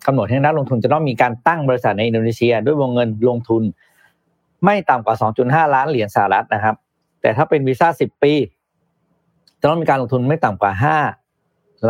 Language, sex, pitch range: Thai, male, 115-150 Hz